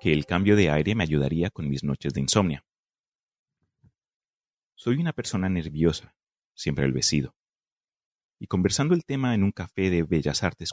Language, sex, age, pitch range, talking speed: Spanish, male, 30-49, 80-110 Hz, 155 wpm